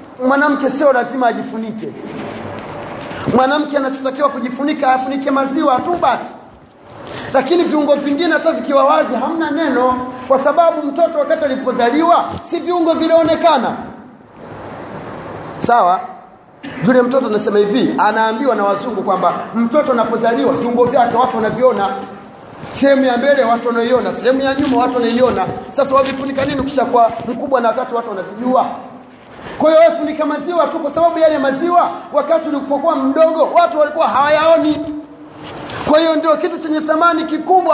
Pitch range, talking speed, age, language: 255-315 Hz, 135 wpm, 40-59, Swahili